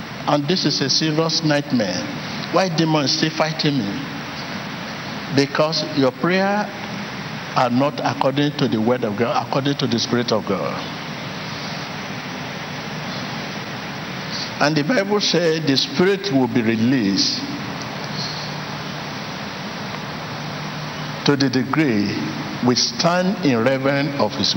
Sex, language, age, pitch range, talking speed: male, English, 60-79, 125-165 Hz, 115 wpm